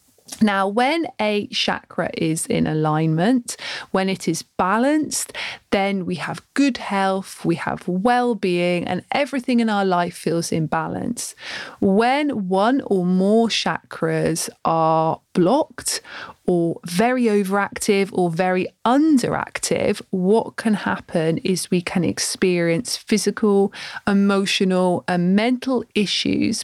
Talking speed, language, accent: 120 wpm, English, British